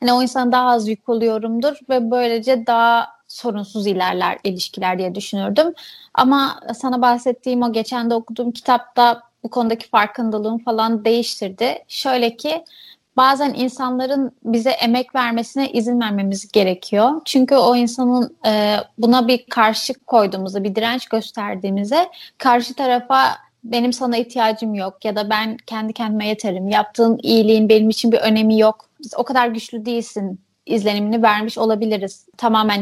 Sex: female